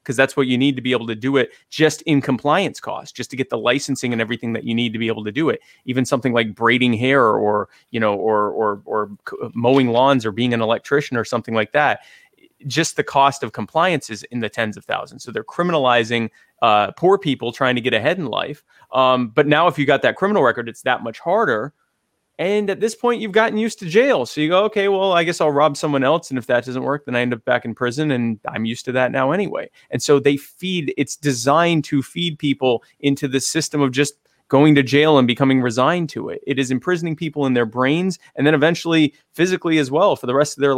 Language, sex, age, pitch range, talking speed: English, male, 20-39, 125-155 Hz, 245 wpm